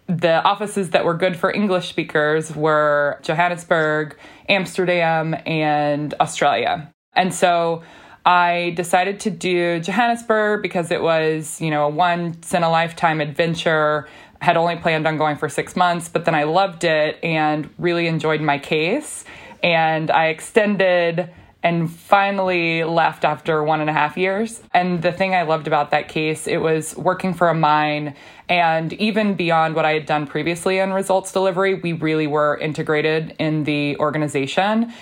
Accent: American